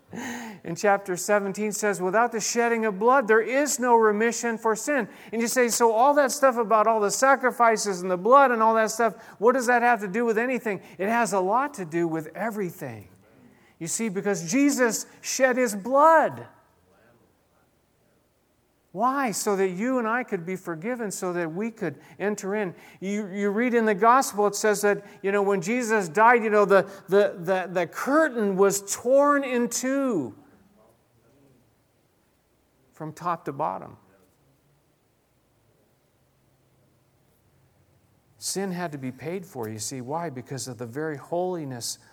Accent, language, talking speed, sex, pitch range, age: American, English, 160 wpm, male, 130-215 Hz, 50-69